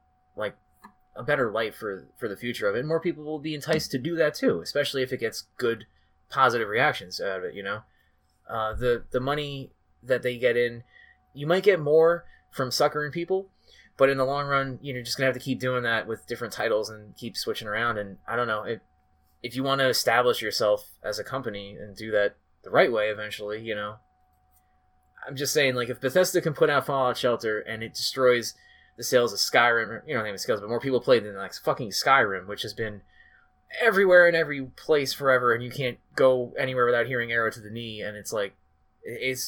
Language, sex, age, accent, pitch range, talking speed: English, male, 20-39, American, 100-140 Hz, 220 wpm